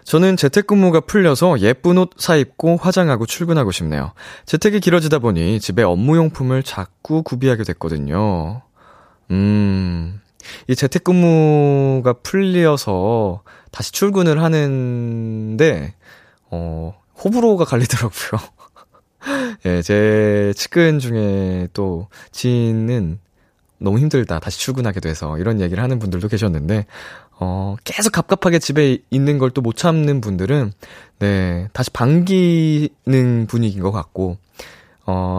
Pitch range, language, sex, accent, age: 100-150 Hz, Korean, male, native, 20-39